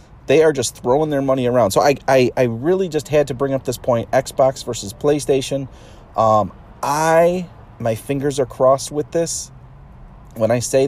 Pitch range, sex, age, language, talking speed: 105-135 Hz, male, 30-49, English, 180 wpm